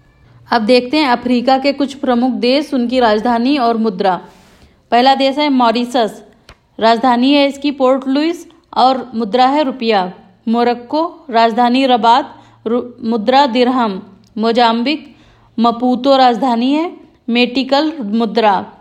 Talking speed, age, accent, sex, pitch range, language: 115 wpm, 40-59, native, female, 230-275 Hz, Hindi